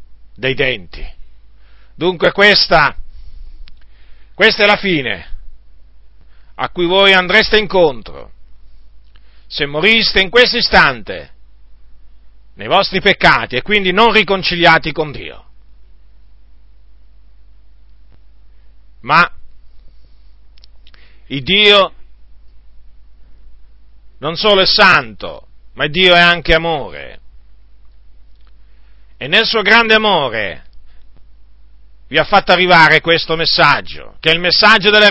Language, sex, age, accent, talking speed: Italian, male, 40-59, native, 95 wpm